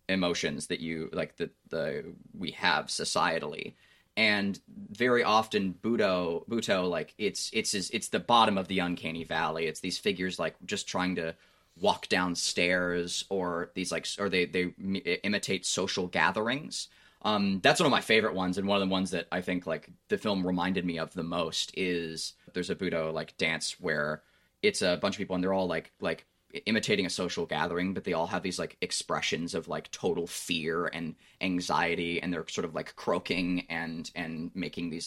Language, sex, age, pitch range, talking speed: English, male, 20-39, 85-100 Hz, 190 wpm